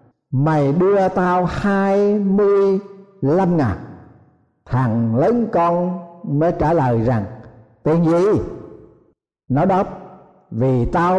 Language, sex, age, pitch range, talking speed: Vietnamese, male, 60-79, 140-195 Hz, 105 wpm